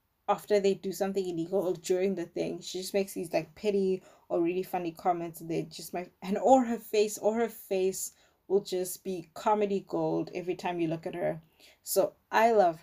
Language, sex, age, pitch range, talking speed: English, female, 20-39, 170-215 Hz, 195 wpm